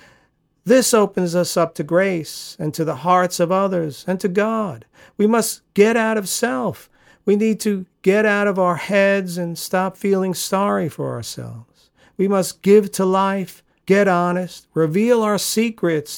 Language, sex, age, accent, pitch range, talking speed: English, male, 50-69, American, 155-215 Hz, 165 wpm